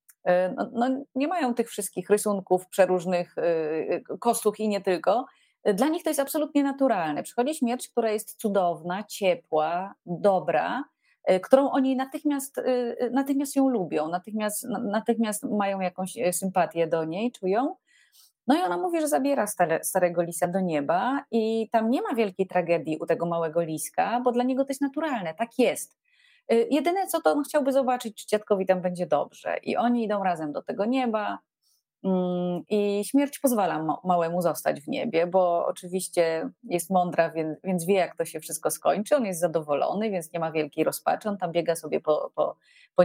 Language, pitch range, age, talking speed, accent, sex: Polish, 175-245 Hz, 30-49, 160 wpm, native, female